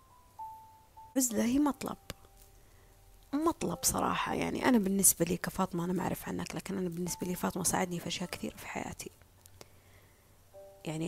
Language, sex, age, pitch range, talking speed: Arabic, female, 20-39, 160-225 Hz, 135 wpm